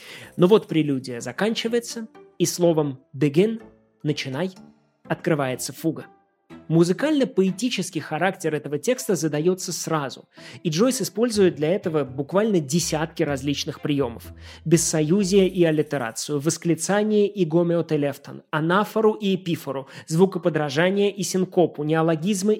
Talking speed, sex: 105 wpm, male